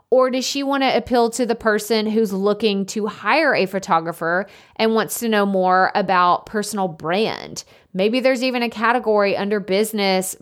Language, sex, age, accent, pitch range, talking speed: English, female, 20-39, American, 185-225 Hz, 165 wpm